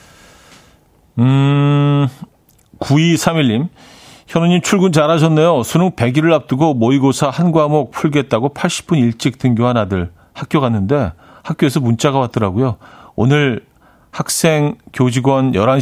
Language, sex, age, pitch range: Korean, male, 40-59, 105-145 Hz